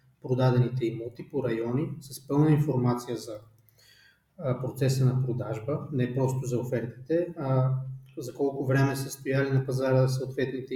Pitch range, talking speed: 130-145 Hz, 135 wpm